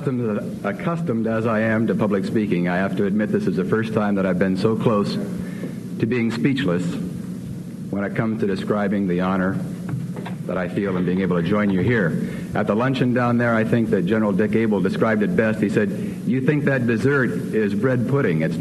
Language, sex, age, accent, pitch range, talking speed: English, male, 50-69, American, 110-145 Hz, 210 wpm